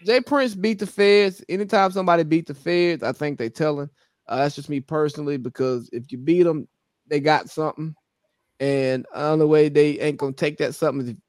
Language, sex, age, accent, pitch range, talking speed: English, male, 20-39, American, 140-205 Hz, 215 wpm